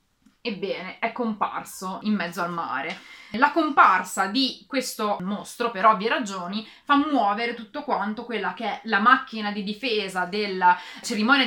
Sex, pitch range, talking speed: female, 185-245 Hz, 145 wpm